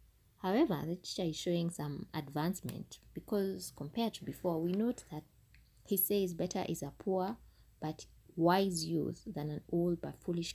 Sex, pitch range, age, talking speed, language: female, 145-190 Hz, 20-39, 160 wpm, English